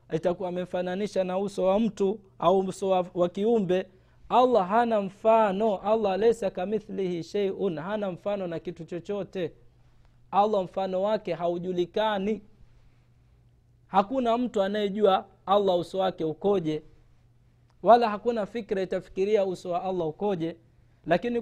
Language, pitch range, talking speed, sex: Swahili, 160-205 Hz, 120 wpm, male